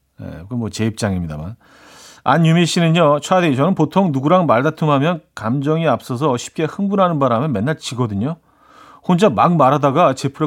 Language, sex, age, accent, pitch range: Korean, male, 40-59, native, 120-170 Hz